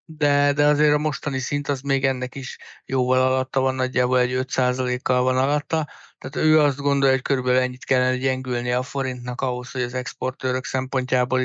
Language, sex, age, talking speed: Hungarian, male, 60-79, 180 wpm